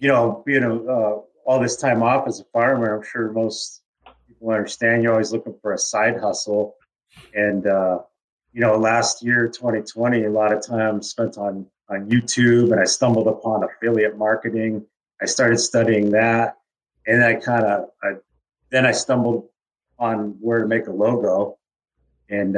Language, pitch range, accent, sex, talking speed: English, 105-115 Hz, American, male, 165 wpm